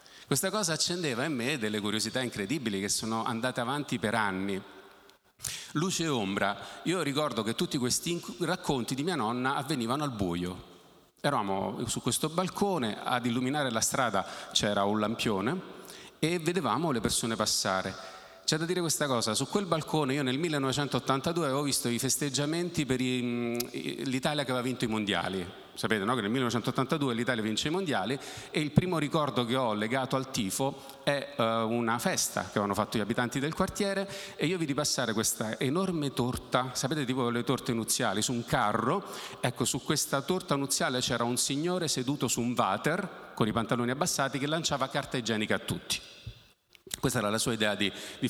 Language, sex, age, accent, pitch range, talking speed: Italian, male, 40-59, native, 115-150 Hz, 175 wpm